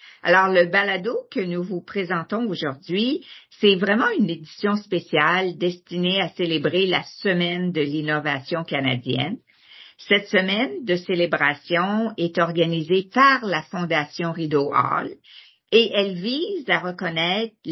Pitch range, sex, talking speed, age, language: 160-200 Hz, female, 125 wpm, 50-69, English